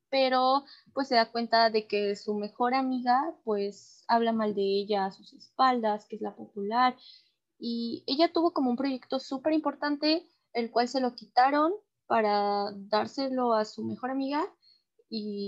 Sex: female